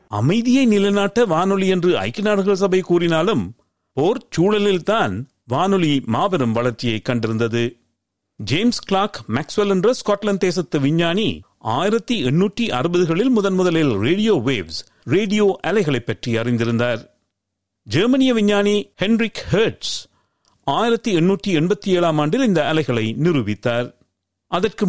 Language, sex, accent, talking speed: Tamil, male, native, 65 wpm